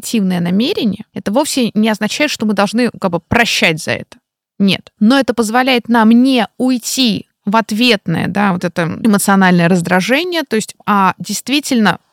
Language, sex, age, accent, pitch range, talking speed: Russian, female, 20-39, native, 195-260 Hz, 160 wpm